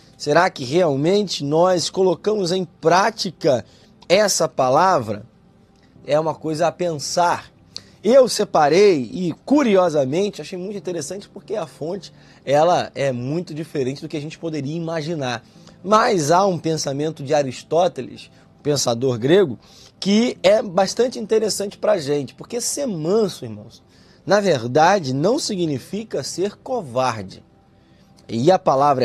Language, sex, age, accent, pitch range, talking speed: Portuguese, male, 20-39, Brazilian, 150-205 Hz, 130 wpm